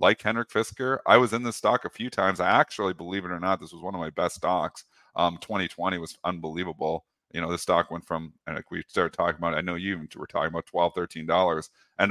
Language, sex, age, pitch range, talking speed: English, male, 40-59, 85-110 Hz, 240 wpm